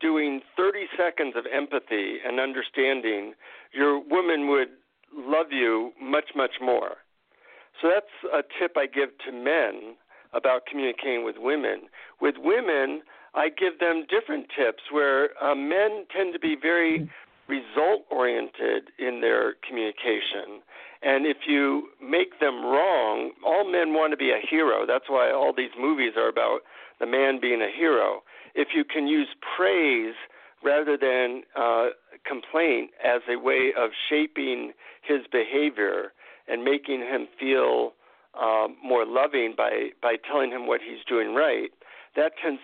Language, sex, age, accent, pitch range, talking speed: English, male, 60-79, American, 125-175 Hz, 145 wpm